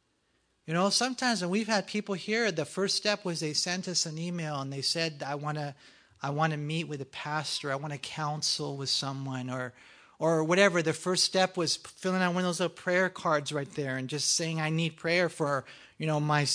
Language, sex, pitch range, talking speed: English, male, 150-185 Hz, 220 wpm